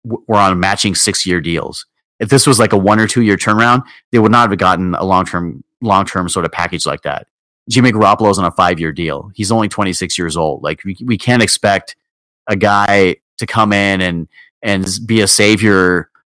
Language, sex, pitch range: English, male, 95-115 Hz